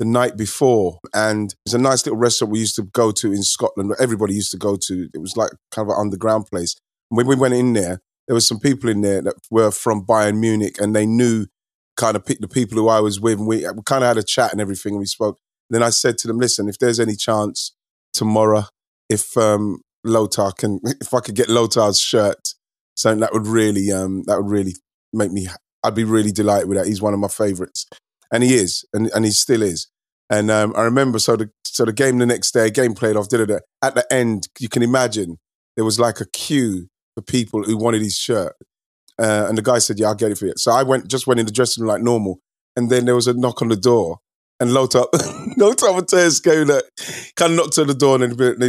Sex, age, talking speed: male, 30-49, 250 wpm